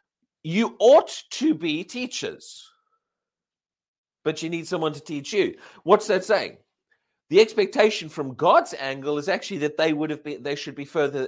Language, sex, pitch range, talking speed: English, male, 170-250 Hz, 165 wpm